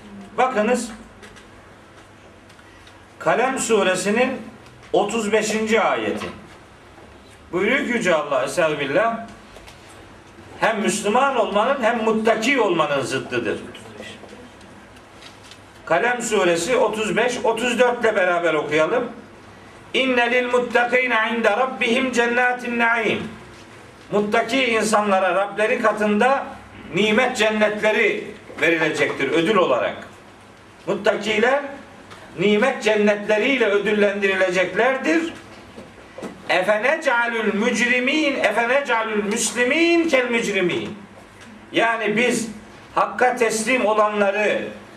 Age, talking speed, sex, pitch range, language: 50-69, 70 wpm, male, 195-245 Hz, Turkish